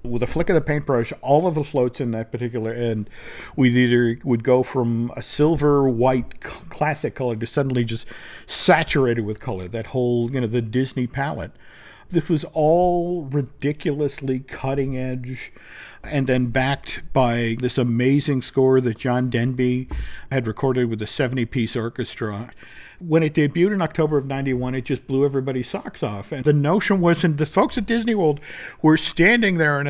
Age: 50-69